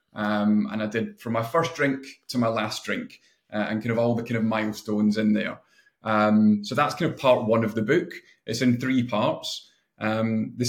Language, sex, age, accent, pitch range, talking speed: English, male, 30-49, British, 110-125 Hz, 230 wpm